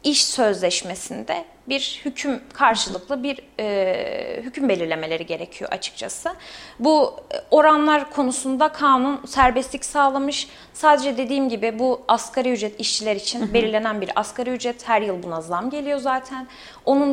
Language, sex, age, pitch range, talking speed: Turkish, female, 30-49, 215-285 Hz, 125 wpm